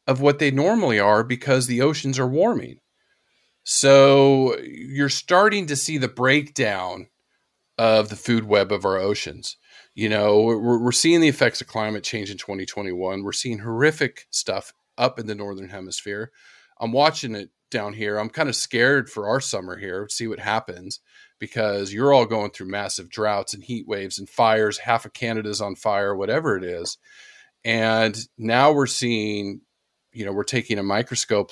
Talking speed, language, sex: 175 wpm, English, male